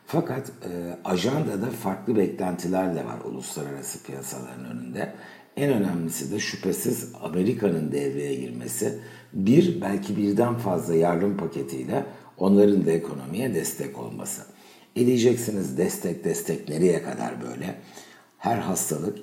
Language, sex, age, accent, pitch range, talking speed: Turkish, male, 60-79, native, 70-100 Hz, 110 wpm